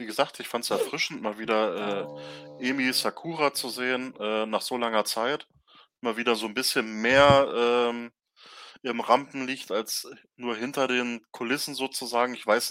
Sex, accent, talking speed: male, German, 165 wpm